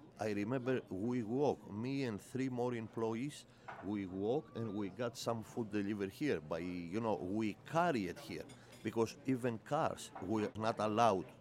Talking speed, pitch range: 165 wpm, 100-125 Hz